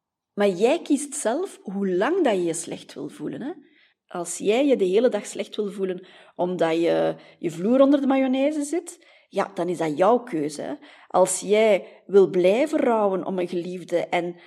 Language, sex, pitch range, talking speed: Dutch, female, 180-260 Hz, 180 wpm